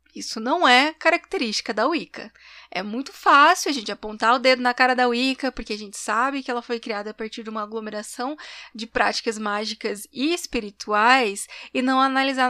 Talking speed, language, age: 185 wpm, Portuguese, 20-39